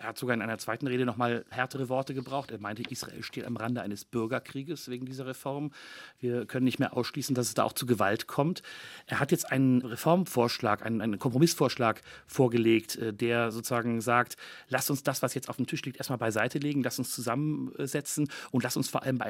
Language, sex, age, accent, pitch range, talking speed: German, male, 40-59, German, 115-130 Hz, 215 wpm